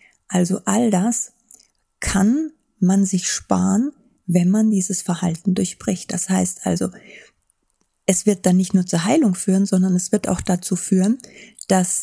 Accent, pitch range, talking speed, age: German, 185-230 Hz, 150 wpm, 30-49